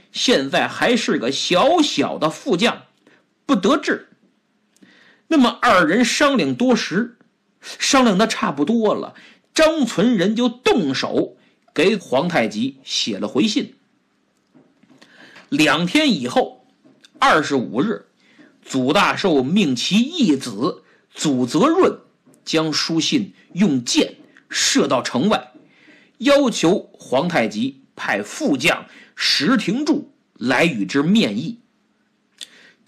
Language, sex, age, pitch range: Chinese, male, 50-69, 210-270 Hz